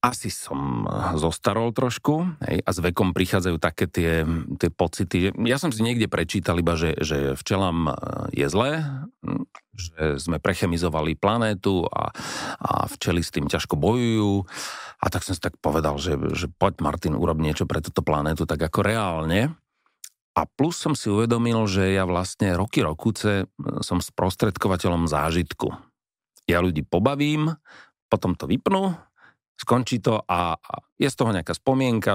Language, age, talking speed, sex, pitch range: Slovak, 40-59, 150 wpm, male, 85-110 Hz